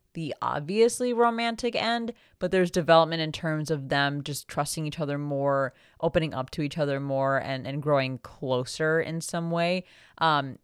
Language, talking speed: English, 170 wpm